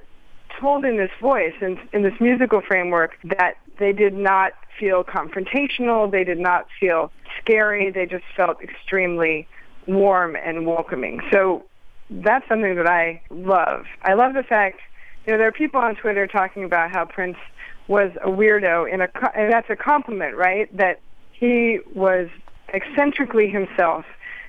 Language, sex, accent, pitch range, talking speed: English, female, American, 185-240 Hz, 155 wpm